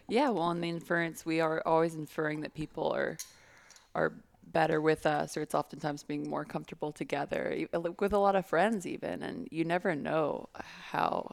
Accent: American